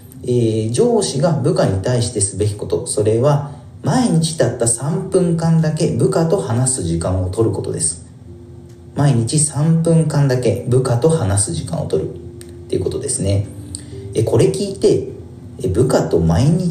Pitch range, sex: 100-160 Hz, male